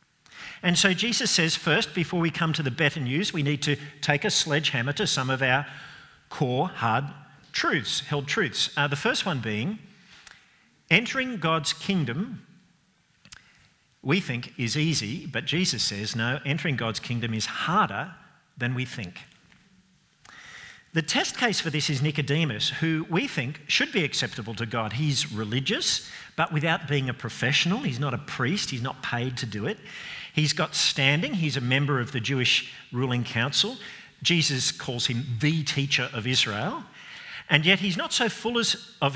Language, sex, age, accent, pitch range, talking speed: English, male, 50-69, Australian, 130-175 Hz, 165 wpm